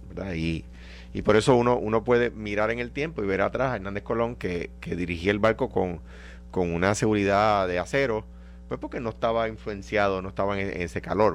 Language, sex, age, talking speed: Spanish, male, 30-49, 200 wpm